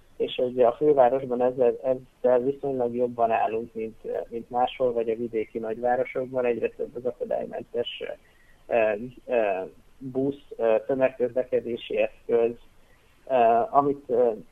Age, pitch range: 30-49, 120-140 Hz